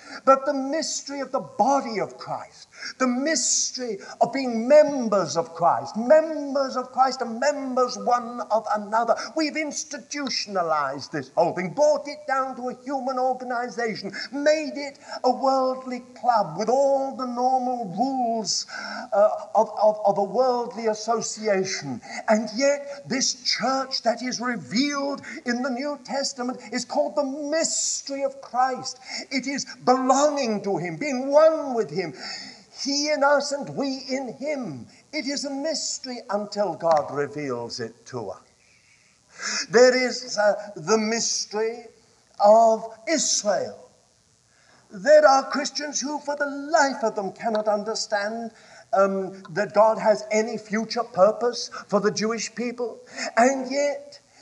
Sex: male